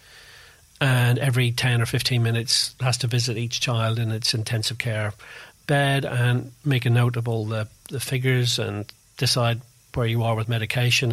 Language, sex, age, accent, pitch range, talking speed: English, male, 40-59, British, 120-140 Hz, 175 wpm